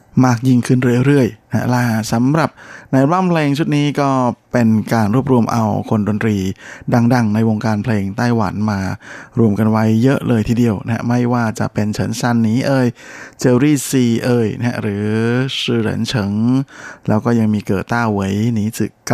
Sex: male